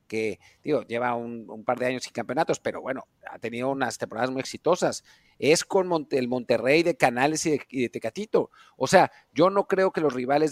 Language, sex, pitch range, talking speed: Spanish, male, 130-170 Hz, 215 wpm